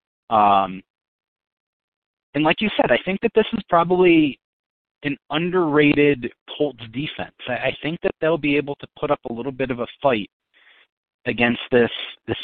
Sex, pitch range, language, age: male, 110-145 Hz, English, 30-49